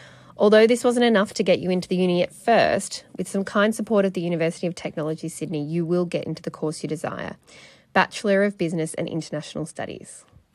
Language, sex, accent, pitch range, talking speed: English, female, Australian, 165-200 Hz, 205 wpm